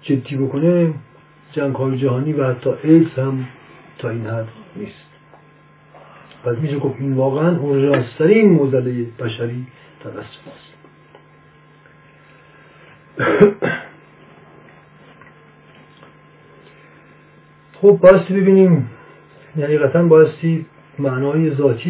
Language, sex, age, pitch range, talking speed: Persian, male, 50-69, 125-150 Hz, 90 wpm